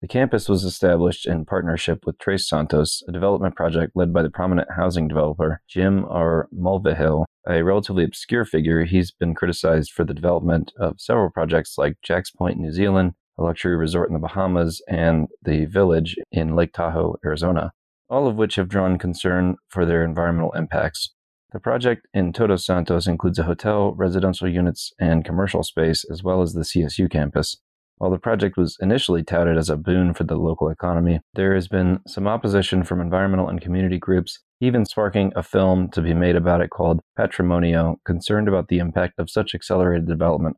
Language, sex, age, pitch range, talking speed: English, male, 30-49, 85-95 Hz, 180 wpm